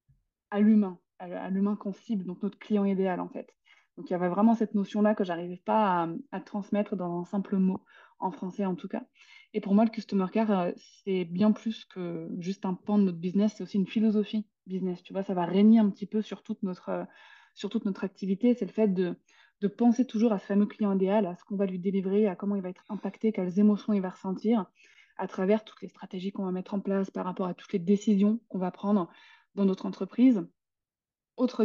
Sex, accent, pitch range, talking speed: female, French, 185-215 Hz, 235 wpm